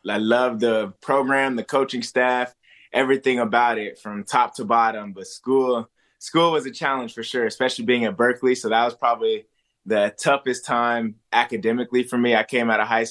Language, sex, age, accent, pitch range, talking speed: English, male, 20-39, American, 105-120 Hz, 190 wpm